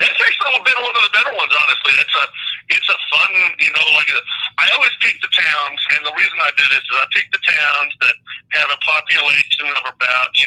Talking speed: 245 wpm